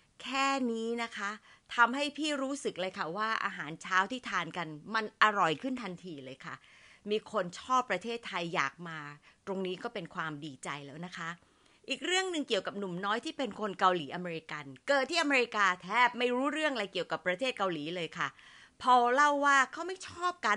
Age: 30-49